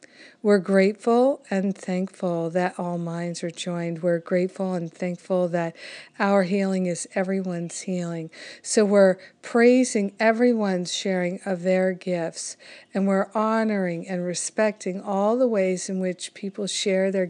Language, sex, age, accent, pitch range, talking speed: English, female, 50-69, American, 180-215 Hz, 140 wpm